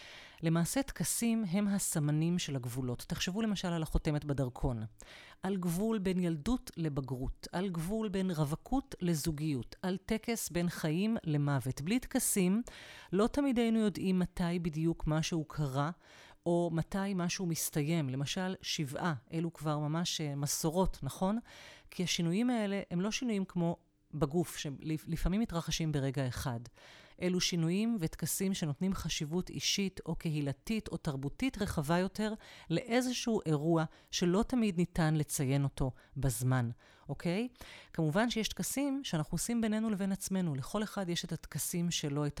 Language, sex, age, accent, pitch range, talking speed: Hebrew, female, 30-49, native, 150-195 Hz, 135 wpm